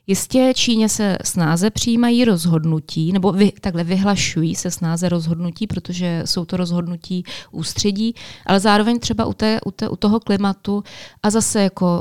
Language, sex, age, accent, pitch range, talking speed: Czech, female, 20-39, native, 180-200 Hz, 155 wpm